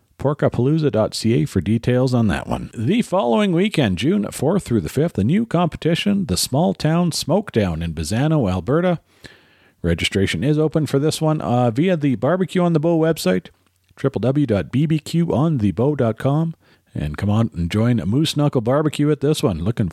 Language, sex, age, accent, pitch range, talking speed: English, male, 40-59, American, 110-155 Hz, 155 wpm